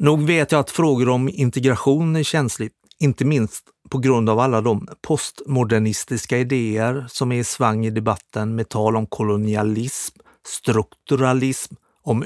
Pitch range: 110-135 Hz